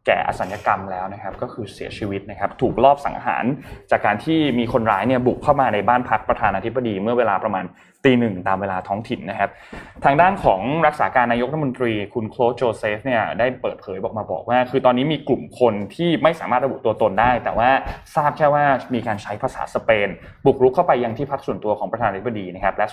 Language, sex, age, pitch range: Thai, male, 20-39, 105-135 Hz